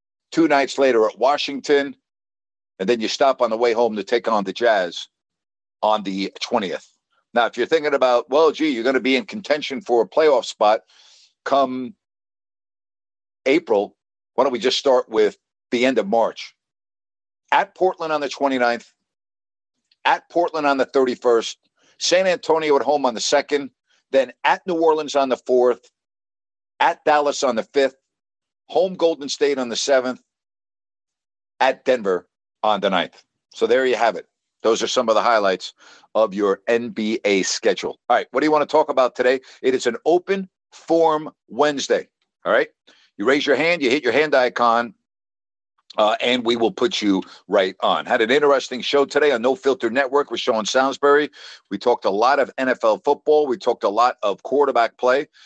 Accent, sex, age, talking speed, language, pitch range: American, male, 50-69, 180 wpm, English, 105-150 Hz